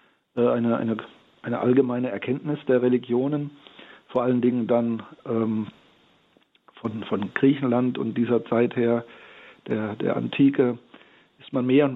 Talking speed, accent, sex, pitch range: 125 wpm, German, male, 115-135 Hz